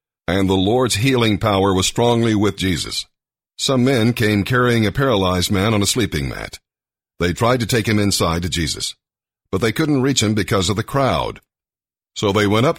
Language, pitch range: English, 95-120 Hz